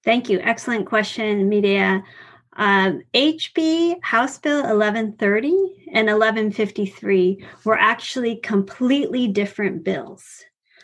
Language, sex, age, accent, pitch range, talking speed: English, female, 30-49, American, 195-230 Hz, 95 wpm